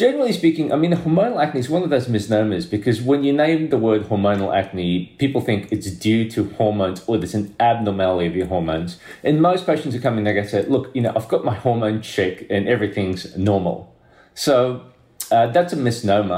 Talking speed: 210 wpm